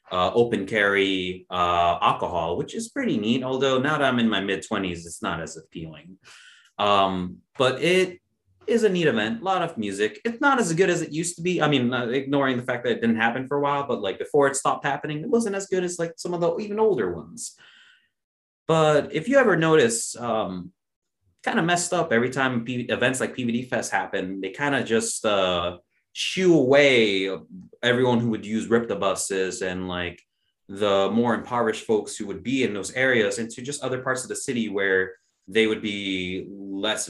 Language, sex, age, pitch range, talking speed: English, male, 30-49, 95-145 Hz, 205 wpm